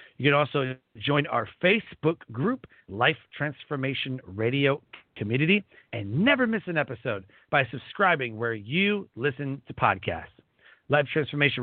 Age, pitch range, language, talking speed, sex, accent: 40-59, 125-165 Hz, English, 130 wpm, male, American